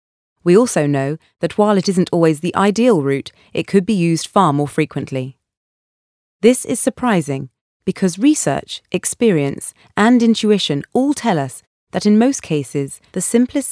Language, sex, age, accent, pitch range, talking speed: English, female, 30-49, British, 150-205 Hz, 155 wpm